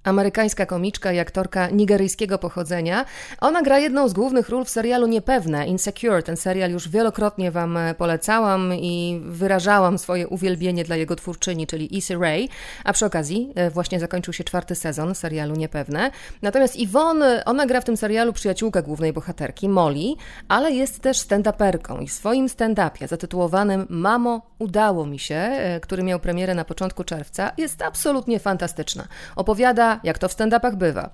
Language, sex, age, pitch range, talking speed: Polish, female, 30-49, 175-225 Hz, 155 wpm